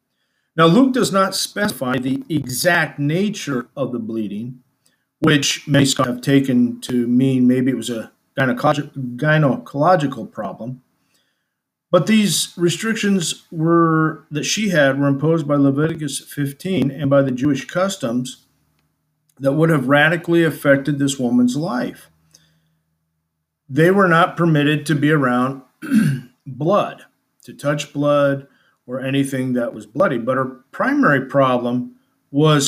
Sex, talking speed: male, 130 wpm